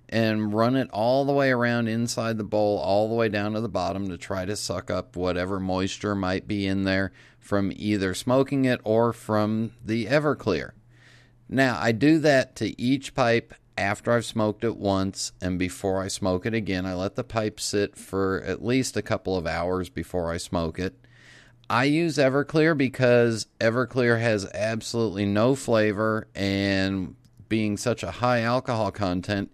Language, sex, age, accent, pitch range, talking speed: English, male, 40-59, American, 100-125 Hz, 175 wpm